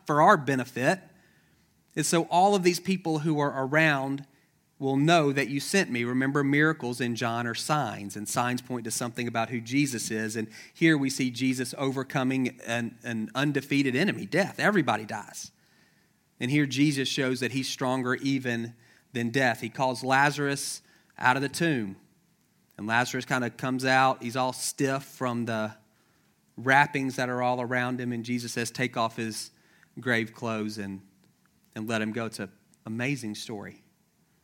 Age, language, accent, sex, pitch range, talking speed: 40-59, English, American, male, 115-140 Hz, 165 wpm